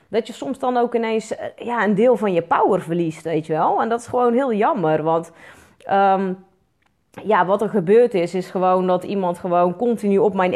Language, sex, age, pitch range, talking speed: Dutch, female, 30-49, 175-235 Hz, 210 wpm